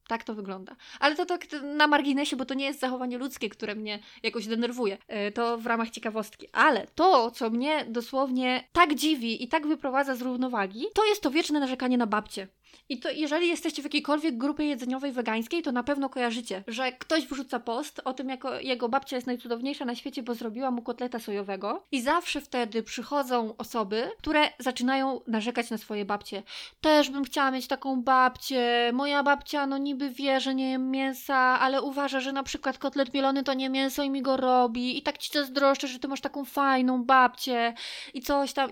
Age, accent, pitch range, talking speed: 20-39, native, 235-290 Hz, 195 wpm